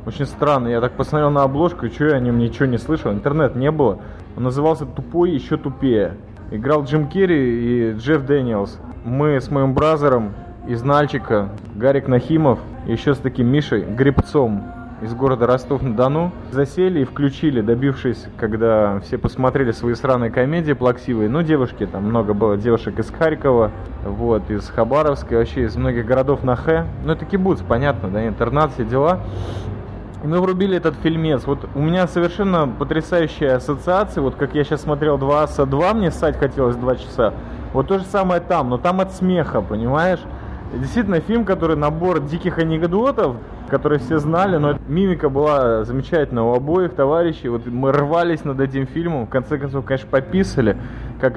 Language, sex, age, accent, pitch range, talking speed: Russian, male, 20-39, native, 115-155 Hz, 165 wpm